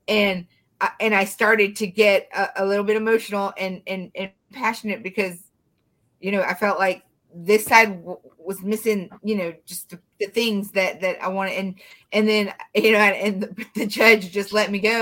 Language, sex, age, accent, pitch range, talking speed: English, female, 30-49, American, 190-220 Hz, 200 wpm